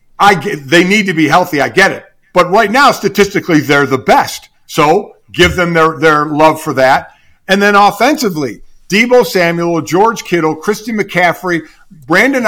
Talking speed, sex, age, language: 170 wpm, male, 50-69, English